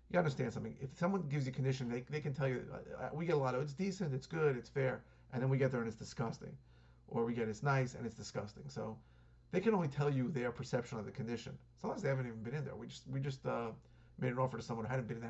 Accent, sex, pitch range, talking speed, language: American, male, 115-140 Hz, 290 wpm, English